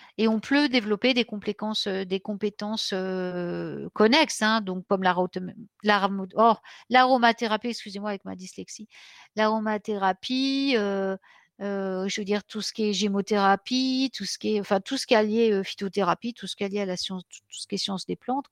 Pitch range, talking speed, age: 185-220 Hz, 190 wpm, 50-69